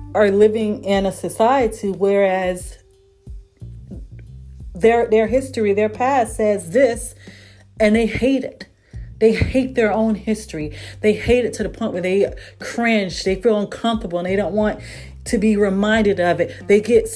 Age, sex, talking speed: 40-59, female, 155 wpm